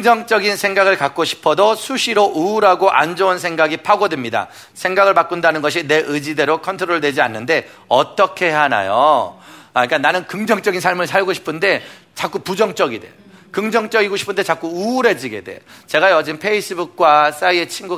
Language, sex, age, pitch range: Korean, male, 40-59, 165-215 Hz